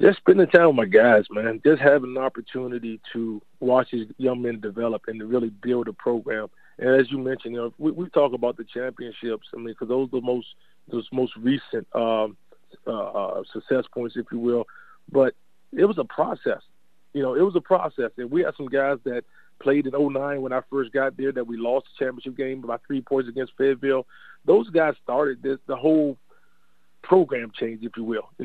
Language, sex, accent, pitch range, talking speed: English, male, American, 125-145 Hz, 210 wpm